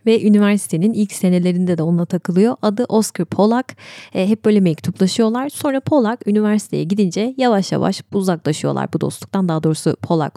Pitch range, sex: 175-220 Hz, female